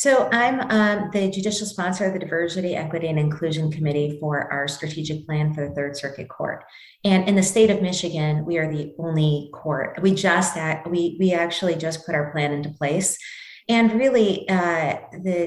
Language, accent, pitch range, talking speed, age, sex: English, American, 155-195 Hz, 190 wpm, 30-49, female